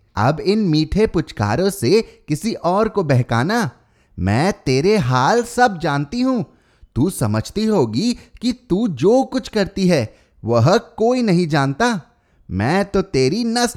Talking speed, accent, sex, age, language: 140 wpm, native, male, 30-49, Hindi